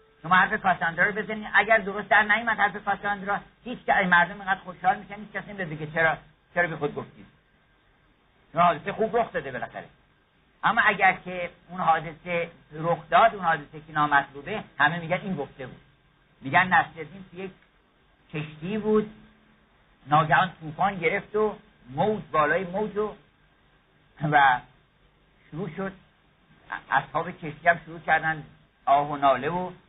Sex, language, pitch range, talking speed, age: male, Persian, 155-205 Hz, 135 wpm, 50-69